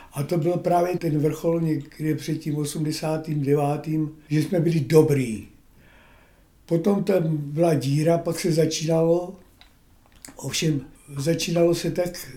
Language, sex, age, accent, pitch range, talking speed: Czech, male, 60-79, native, 155-175 Hz, 120 wpm